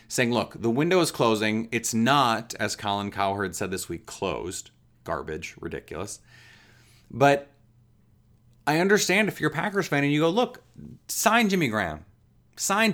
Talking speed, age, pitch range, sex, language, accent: 155 wpm, 30-49, 110-155 Hz, male, English, American